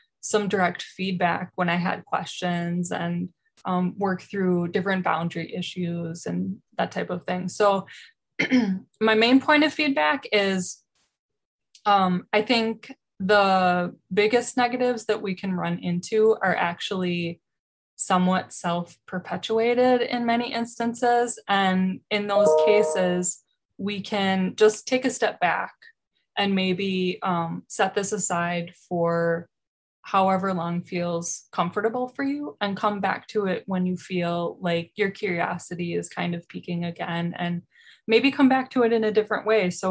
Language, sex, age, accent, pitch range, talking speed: English, female, 20-39, American, 175-215 Hz, 145 wpm